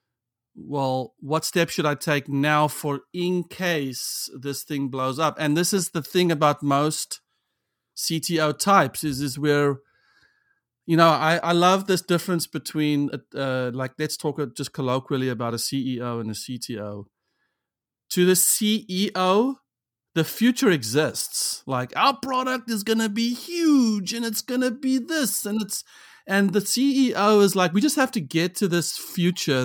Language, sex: English, male